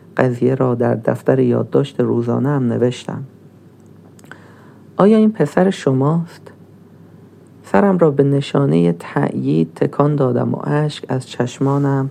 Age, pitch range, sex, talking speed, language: 40-59, 120-145 Hz, male, 115 wpm, Persian